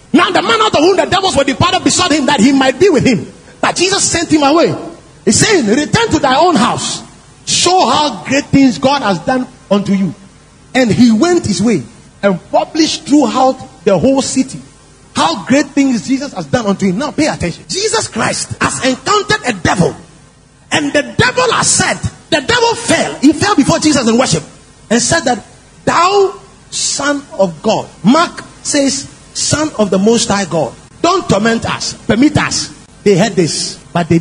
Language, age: English, 40-59